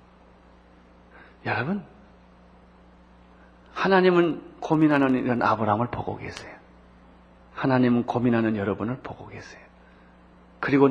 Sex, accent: male, native